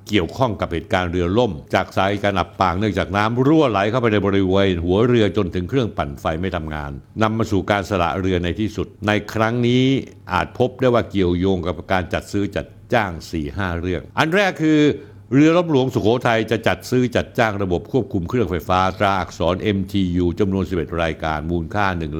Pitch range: 90-130 Hz